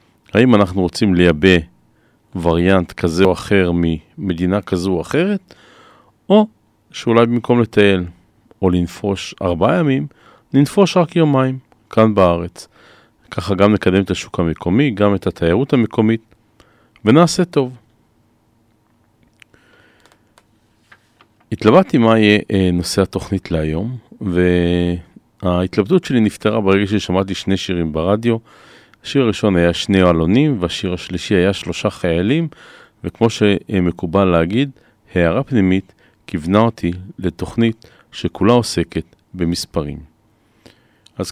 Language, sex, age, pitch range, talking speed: Hebrew, male, 40-59, 90-115 Hz, 105 wpm